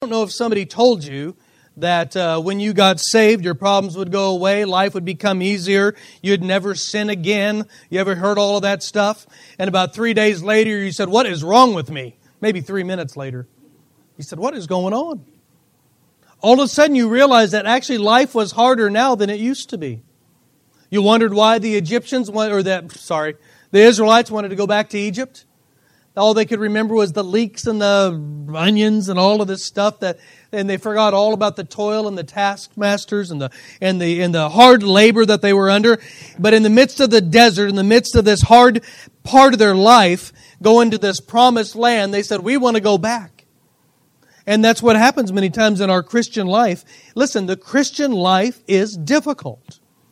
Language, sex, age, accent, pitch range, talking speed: English, male, 40-59, American, 190-230 Hz, 205 wpm